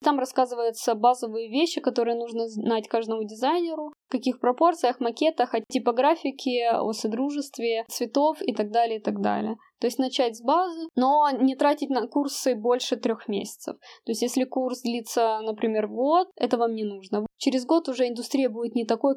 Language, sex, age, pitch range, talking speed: Russian, female, 20-39, 230-270 Hz, 170 wpm